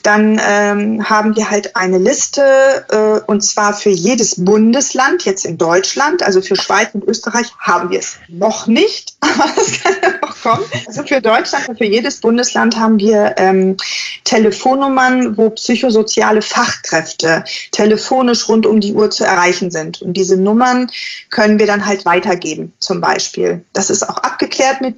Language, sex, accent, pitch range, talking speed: German, female, German, 200-230 Hz, 165 wpm